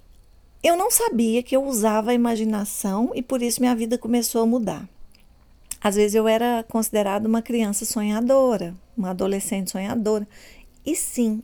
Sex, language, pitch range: female, Portuguese, 210-275 Hz